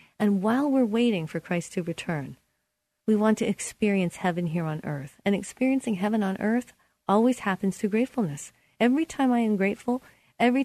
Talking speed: 175 wpm